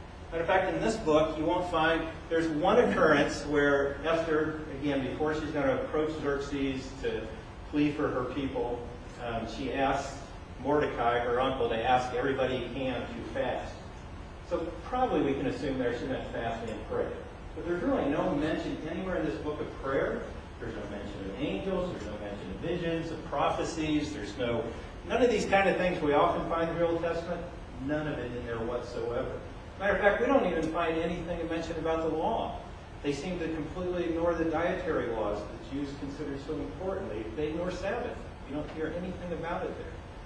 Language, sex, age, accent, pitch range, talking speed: English, male, 40-59, American, 115-165 Hz, 195 wpm